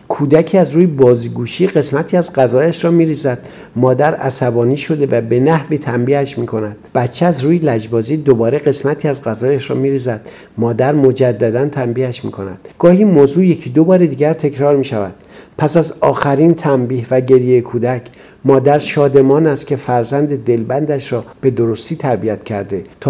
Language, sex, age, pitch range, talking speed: Persian, male, 50-69, 125-150 Hz, 150 wpm